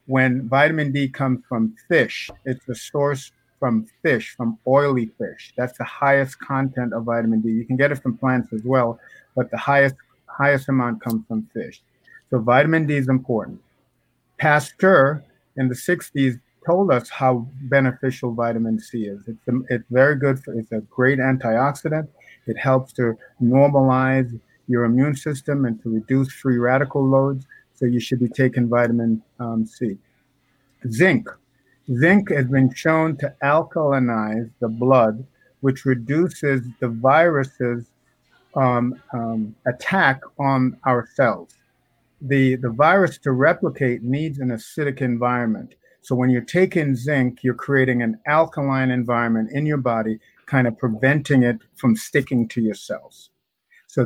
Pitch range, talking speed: 120-140 Hz, 150 wpm